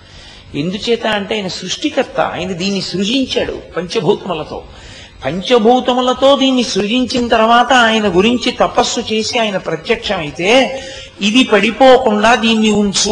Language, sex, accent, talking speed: Telugu, male, native, 100 wpm